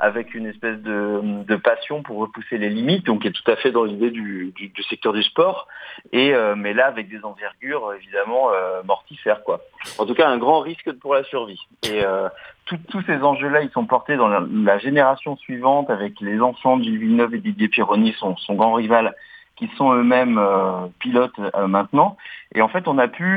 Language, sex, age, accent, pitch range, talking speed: French, male, 30-49, French, 110-140 Hz, 205 wpm